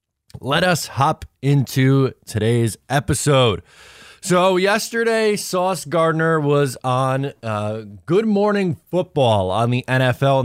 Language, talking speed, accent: English, 110 wpm, American